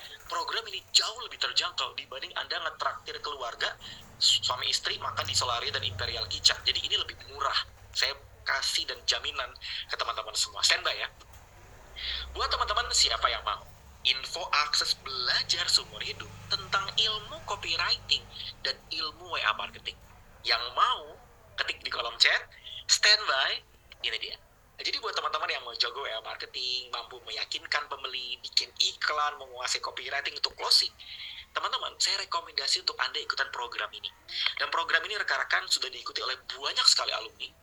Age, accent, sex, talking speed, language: 30-49, native, male, 145 wpm, Indonesian